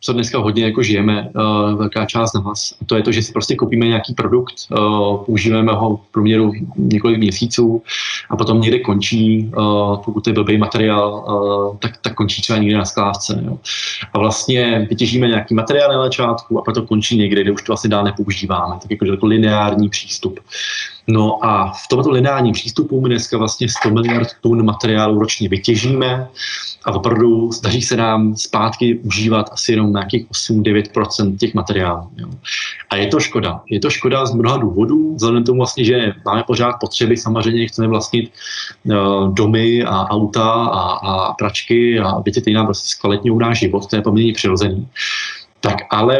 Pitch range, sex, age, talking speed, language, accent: 105-120 Hz, male, 20-39, 180 wpm, Czech, native